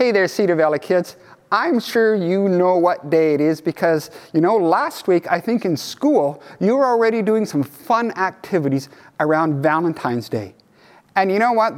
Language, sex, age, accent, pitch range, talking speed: English, male, 50-69, American, 155-235 Hz, 185 wpm